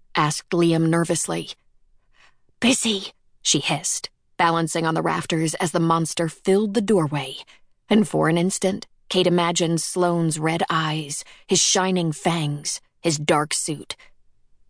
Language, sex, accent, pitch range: English, female, American, 155-175 Hz